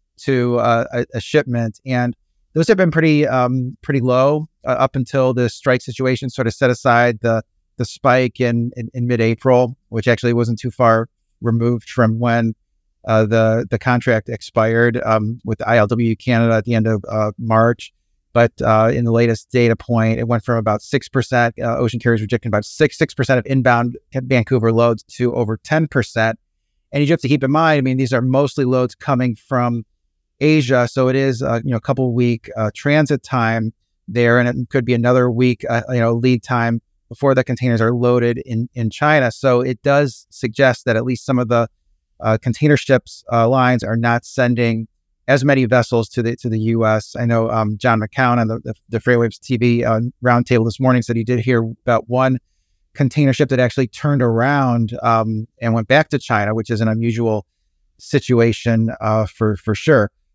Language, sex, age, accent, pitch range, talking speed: English, male, 30-49, American, 115-130 Hz, 200 wpm